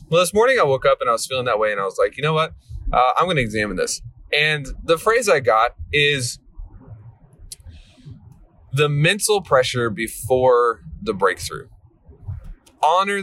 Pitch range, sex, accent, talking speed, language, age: 100-145 Hz, male, American, 170 wpm, English, 20-39